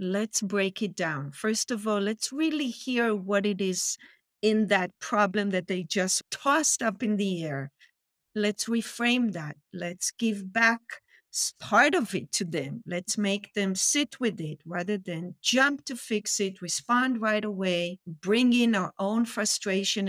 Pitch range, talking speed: 180-230 Hz, 165 wpm